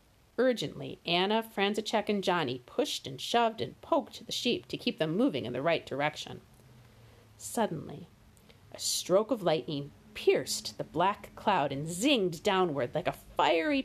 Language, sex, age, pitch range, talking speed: English, female, 50-69, 125-210 Hz, 150 wpm